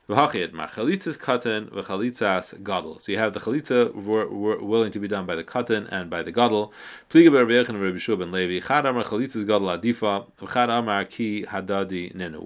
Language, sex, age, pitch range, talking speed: English, male, 30-49, 100-125 Hz, 185 wpm